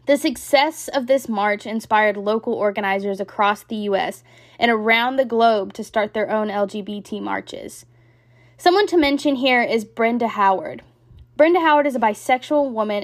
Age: 10-29